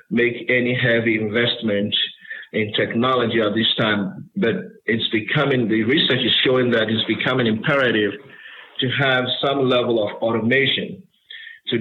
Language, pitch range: English, 115-130 Hz